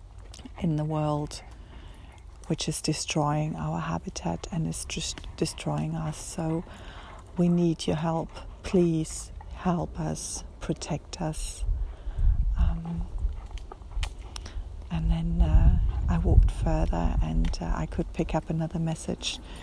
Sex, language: female, English